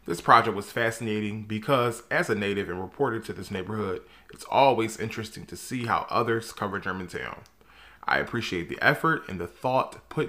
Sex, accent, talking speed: male, American, 175 wpm